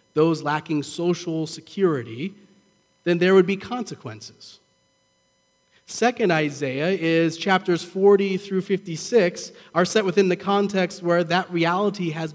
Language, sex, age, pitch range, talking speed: English, male, 30-49, 140-185 Hz, 120 wpm